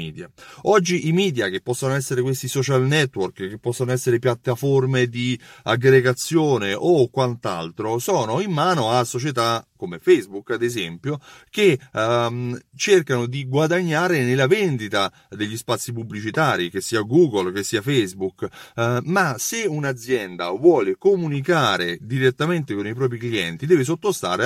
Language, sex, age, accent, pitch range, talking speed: Italian, male, 30-49, native, 115-170 Hz, 135 wpm